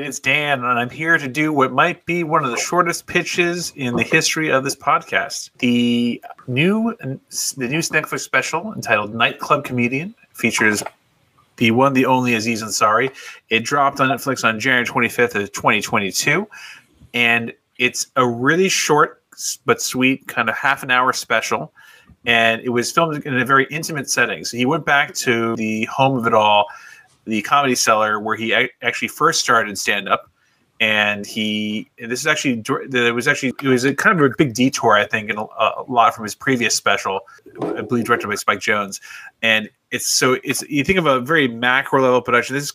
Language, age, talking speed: English, 30-49, 190 wpm